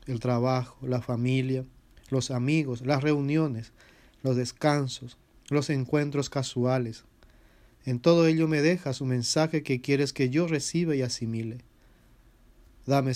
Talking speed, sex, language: 130 wpm, male, English